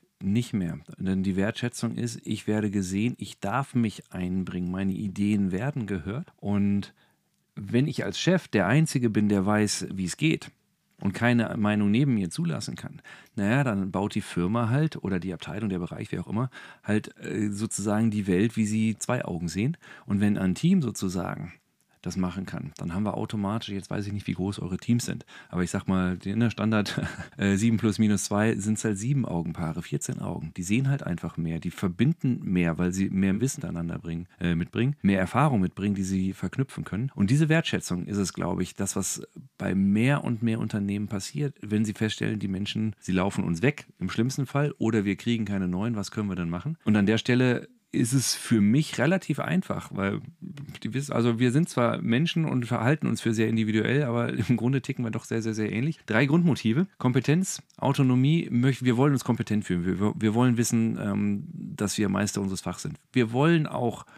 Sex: male